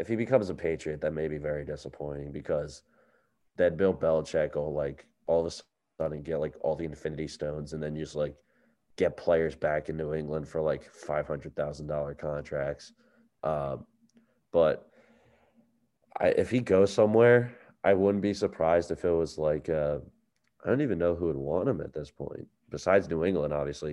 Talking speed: 175 wpm